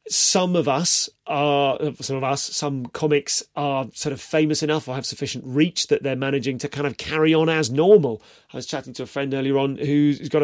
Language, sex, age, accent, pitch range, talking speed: English, male, 30-49, British, 130-160 Hz, 220 wpm